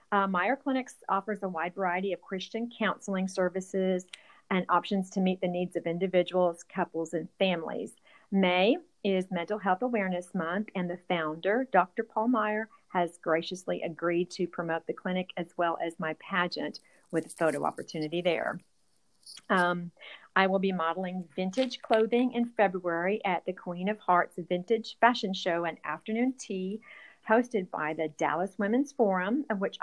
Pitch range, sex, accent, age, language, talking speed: 175-220 Hz, female, American, 40-59, English, 160 wpm